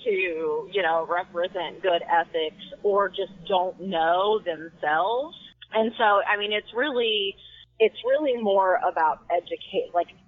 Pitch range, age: 175-210 Hz, 30-49